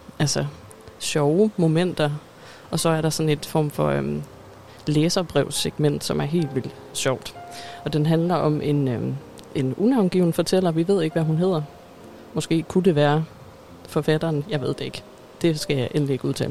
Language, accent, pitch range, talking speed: Danish, native, 140-165 Hz, 175 wpm